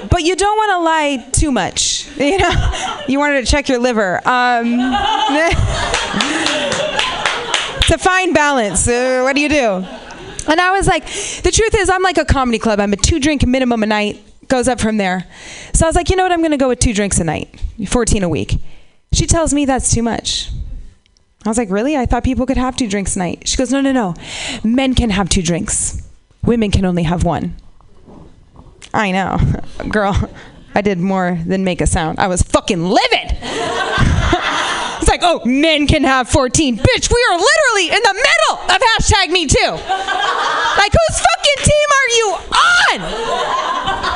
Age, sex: 20-39, female